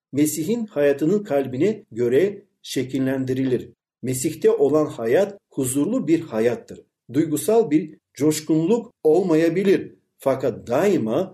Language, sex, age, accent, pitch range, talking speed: Turkish, male, 50-69, native, 140-205 Hz, 90 wpm